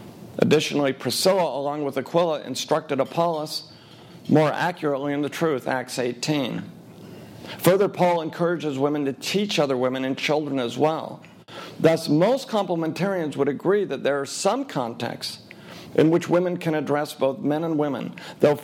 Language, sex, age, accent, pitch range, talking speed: English, male, 50-69, American, 140-175 Hz, 150 wpm